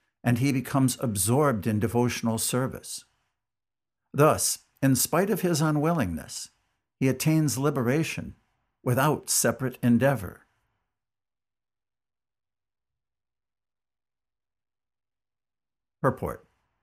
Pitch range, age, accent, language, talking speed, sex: 110-140 Hz, 60-79, American, English, 70 wpm, male